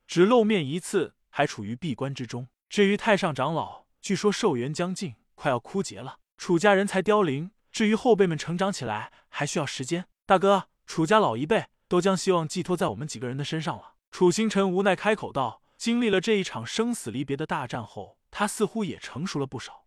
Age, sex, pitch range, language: 20-39, male, 150-205 Hz, Chinese